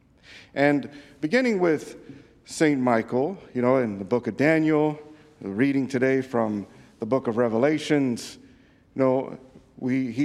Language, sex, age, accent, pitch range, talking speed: English, male, 50-69, American, 120-155 Hz, 140 wpm